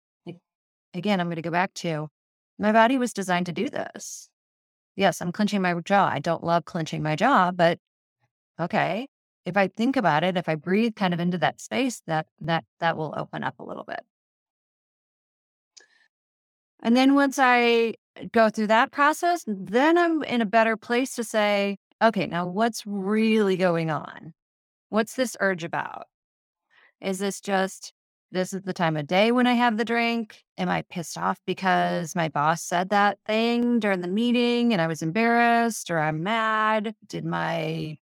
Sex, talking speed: female, 175 wpm